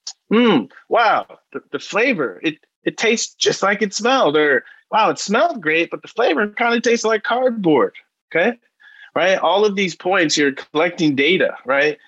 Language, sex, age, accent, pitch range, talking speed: English, male, 30-49, American, 160-250 Hz, 175 wpm